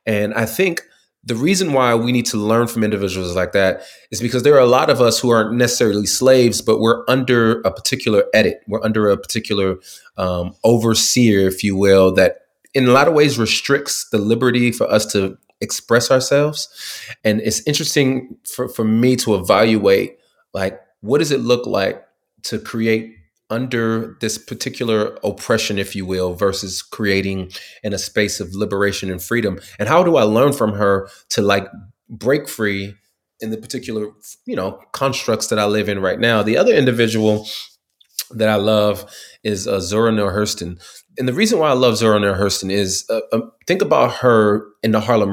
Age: 30-49